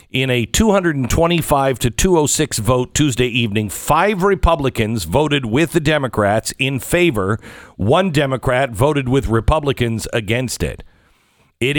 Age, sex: 50-69, male